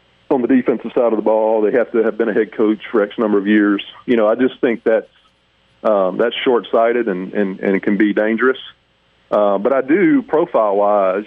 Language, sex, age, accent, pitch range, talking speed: English, male, 40-59, American, 100-120 Hz, 220 wpm